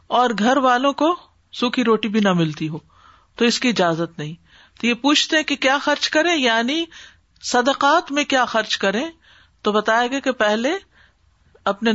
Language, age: Urdu, 50-69